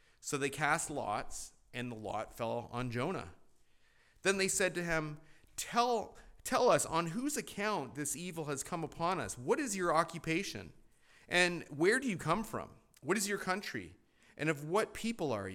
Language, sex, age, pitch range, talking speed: English, male, 40-59, 115-165 Hz, 180 wpm